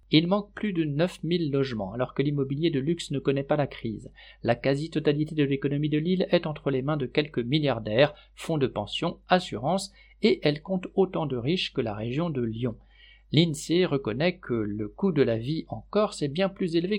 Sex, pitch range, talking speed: male, 125-170 Hz, 205 wpm